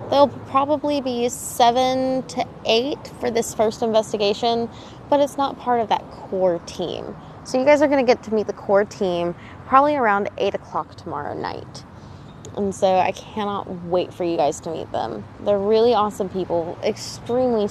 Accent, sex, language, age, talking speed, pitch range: American, female, English, 20-39, 175 wpm, 185-240 Hz